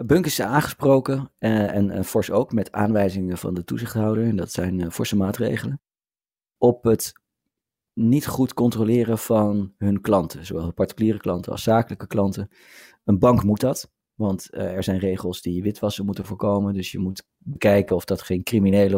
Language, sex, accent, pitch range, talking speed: Dutch, male, Dutch, 95-115 Hz, 170 wpm